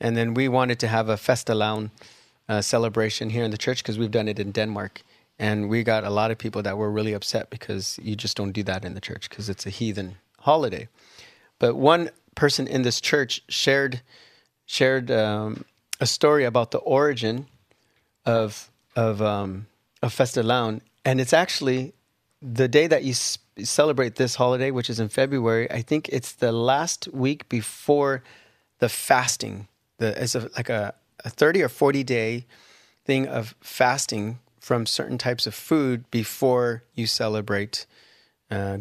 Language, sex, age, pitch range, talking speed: English, male, 30-49, 105-125 Hz, 170 wpm